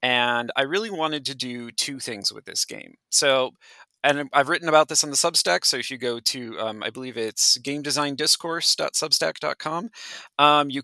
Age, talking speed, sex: 30-49, 170 wpm, male